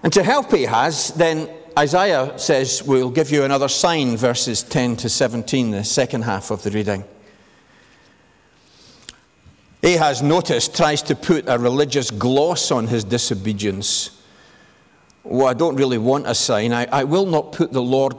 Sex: male